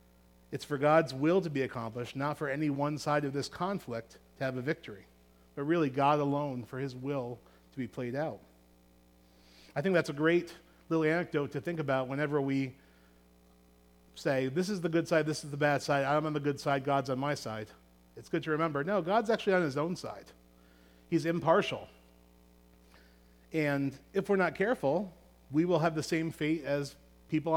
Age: 40-59